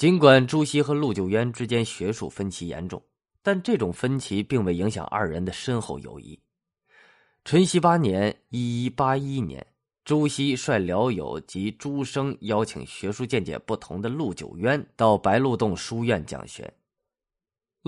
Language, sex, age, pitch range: Chinese, male, 20-39, 95-145 Hz